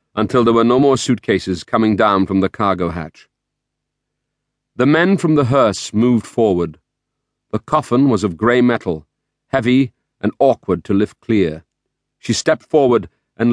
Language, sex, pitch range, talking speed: English, male, 95-135 Hz, 155 wpm